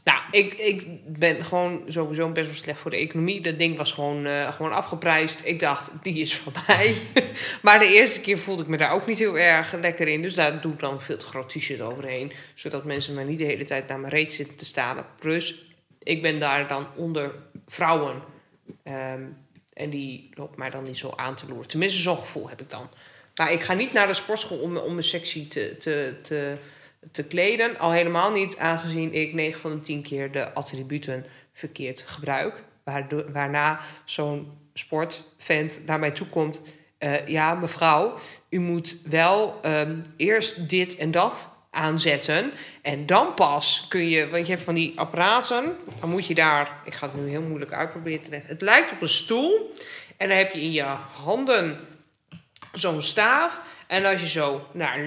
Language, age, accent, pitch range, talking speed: Dutch, 20-39, Dutch, 145-170 Hz, 185 wpm